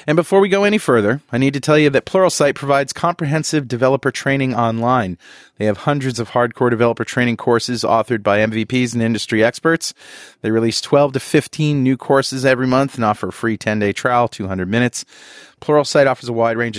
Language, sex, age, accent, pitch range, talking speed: English, male, 40-59, American, 110-135 Hz, 195 wpm